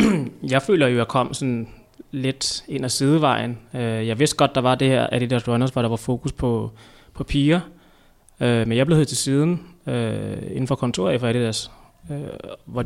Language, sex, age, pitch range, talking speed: Danish, male, 20-39, 115-135 Hz, 185 wpm